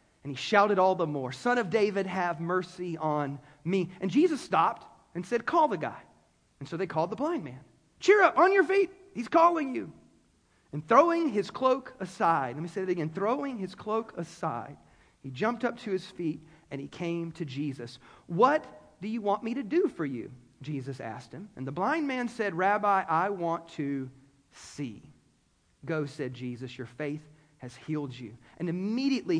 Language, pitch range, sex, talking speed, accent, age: English, 160-250 Hz, male, 190 wpm, American, 40-59